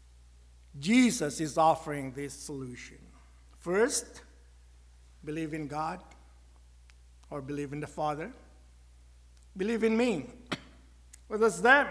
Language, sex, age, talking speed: English, male, 60-79, 100 wpm